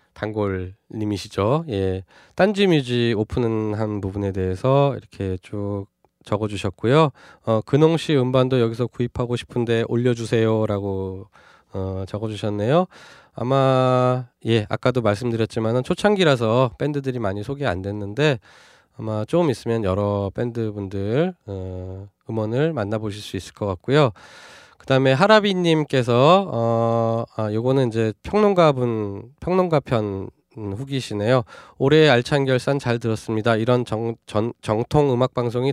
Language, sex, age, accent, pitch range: Korean, male, 20-39, native, 105-130 Hz